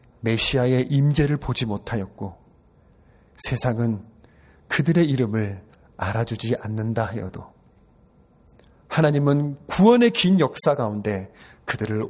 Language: Korean